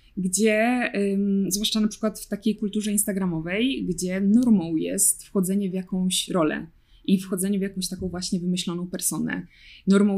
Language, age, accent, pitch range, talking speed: Polish, 20-39, native, 190-225 Hz, 140 wpm